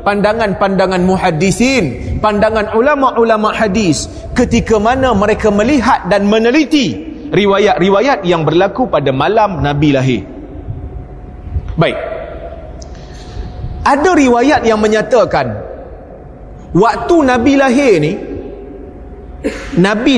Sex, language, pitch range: male, Malay, 155-255 Hz